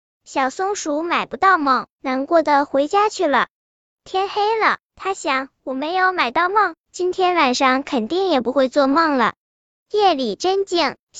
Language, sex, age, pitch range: Chinese, male, 10-29, 285-375 Hz